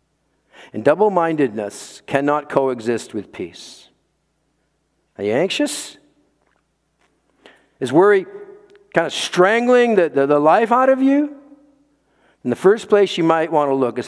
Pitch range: 145-230 Hz